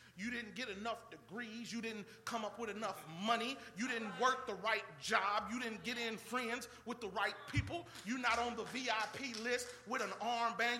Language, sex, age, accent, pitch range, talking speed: English, male, 40-59, American, 180-235 Hz, 200 wpm